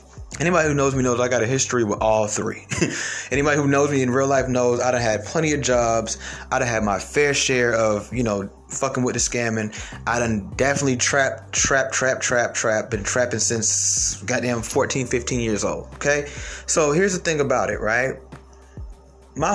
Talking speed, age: 195 wpm, 20-39